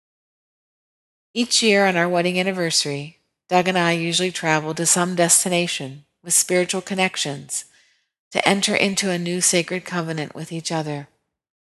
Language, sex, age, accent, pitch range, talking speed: English, female, 40-59, American, 165-200 Hz, 140 wpm